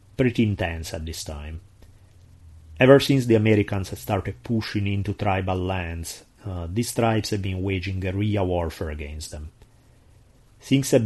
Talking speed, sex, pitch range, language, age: 150 wpm, male, 95-120 Hz, English, 30-49